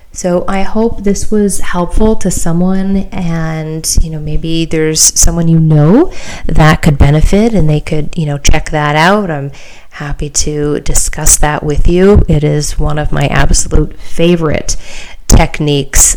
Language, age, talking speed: English, 30-49, 155 wpm